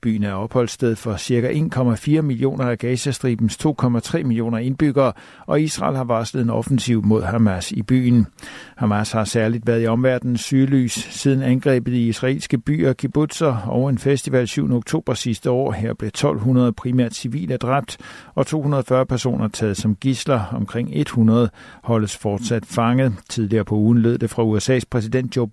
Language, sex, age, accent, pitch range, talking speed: Danish, male, 60-79, native, 110-135 Hz, 160 wpm